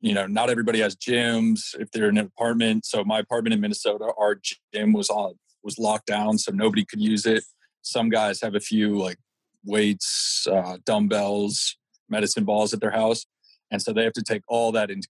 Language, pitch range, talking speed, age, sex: English, 100-115 Hz, 205 wpm, 30-49, male